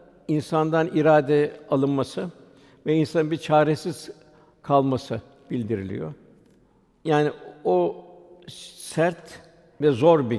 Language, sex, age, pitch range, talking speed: Turkish, male, 60-79, 130-160 Hz, 85 wpm